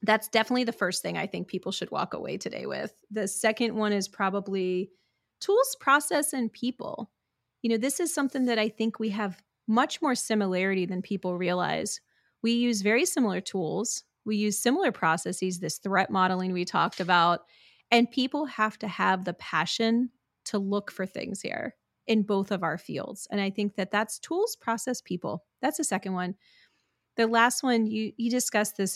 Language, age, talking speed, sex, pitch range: English, 30-49, 185 wpm, female, 190-235 Hz